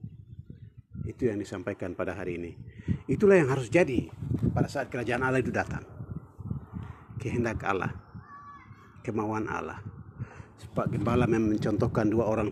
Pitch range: 110-140 Hz